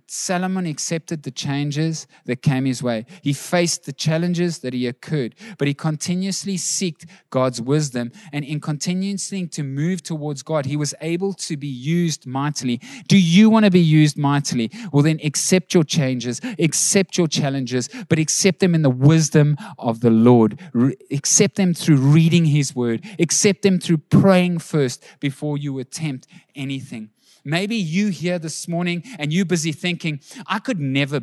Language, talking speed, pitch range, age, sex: English, 165 wpm, 145-195 Hz, 20-39, male